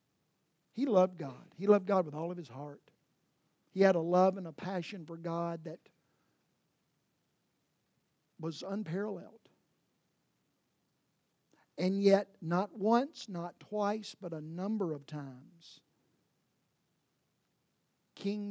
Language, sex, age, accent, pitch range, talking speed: English, male, 50-69, American, 165-210 Hz, 115 wpm